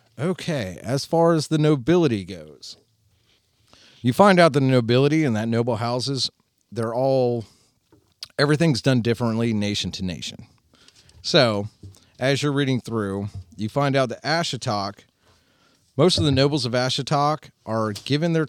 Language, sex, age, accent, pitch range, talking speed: English, male, 40-59, American, 100-125 Hz, 140 wpm